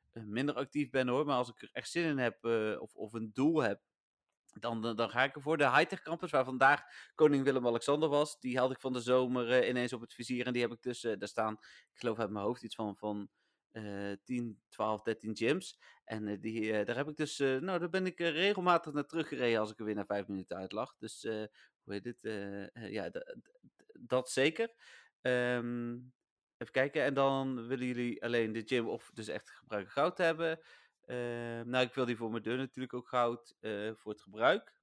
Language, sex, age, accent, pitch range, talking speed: Dutch, male, 30-49, Dutch, 115-145 Hz, 205 wpm